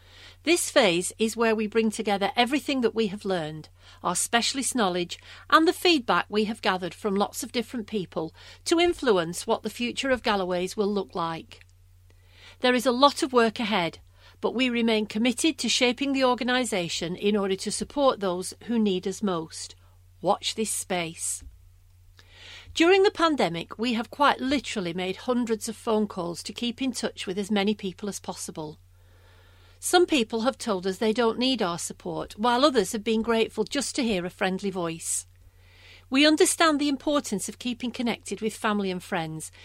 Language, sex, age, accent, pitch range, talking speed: English, female, 40-59, British, 170-245 Hz, 175 wpm